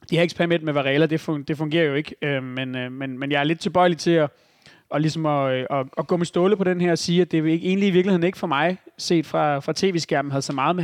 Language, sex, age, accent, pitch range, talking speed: Danish, male, 30-49, native, 145-170 Hz, 220 wpm